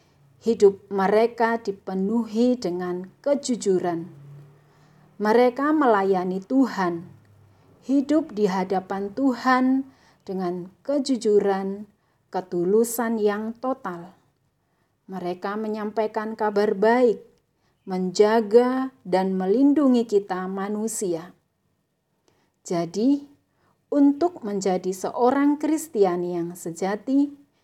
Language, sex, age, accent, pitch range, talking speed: Indonesian, female, 40-59, native, 180-240 Hz, 70 wpm